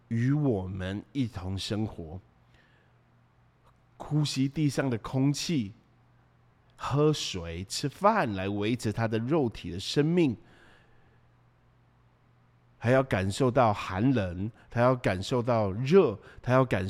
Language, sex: Chinese, male